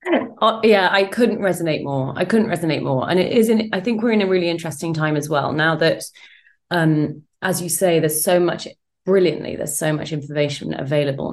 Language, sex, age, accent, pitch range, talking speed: English, female, 30-49, British, 155-200 Hz, 210 wpm